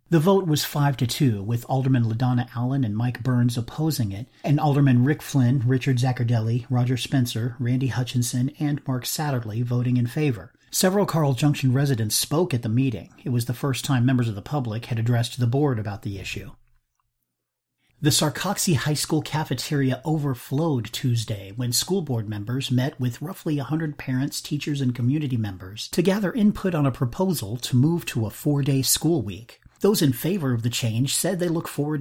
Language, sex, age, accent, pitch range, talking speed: English, male, 40-59, American, 120-145 Hz, 180 wpm